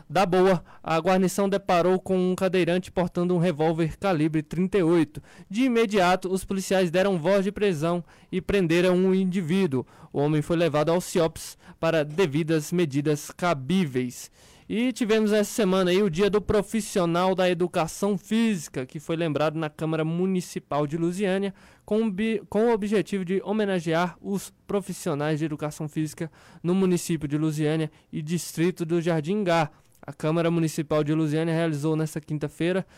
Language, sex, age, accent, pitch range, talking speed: Portuguese, male, 20-39, Brazilian, 160-190 Hz, 145 wpm